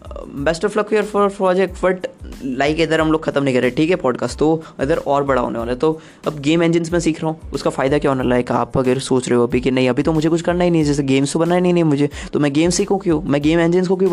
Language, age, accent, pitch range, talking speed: Hindi, 20-39, native, 135-160 Hz, 295 wpm